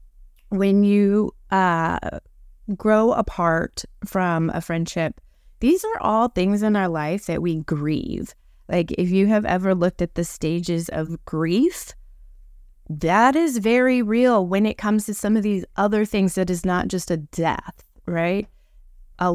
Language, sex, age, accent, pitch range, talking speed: English, female, 20-39, American, 170-215 Hz, 155 wpm